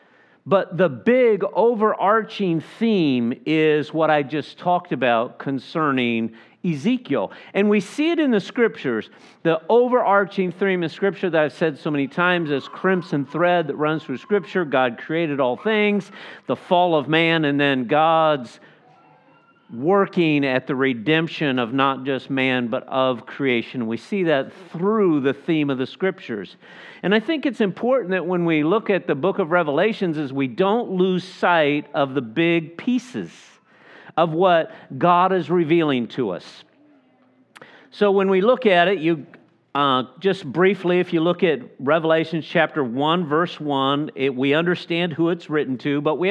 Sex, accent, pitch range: male, American, 145-190 Hz